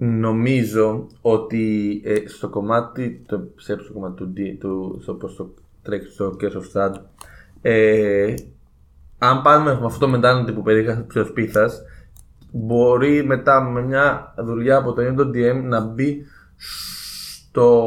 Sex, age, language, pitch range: male, 20-39, Greek, 105-125 Hz